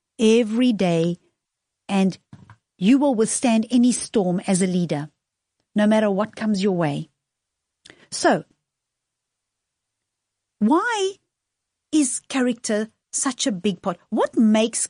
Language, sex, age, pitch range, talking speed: English, female, 50-69, 190-260 Hz, 110 wpm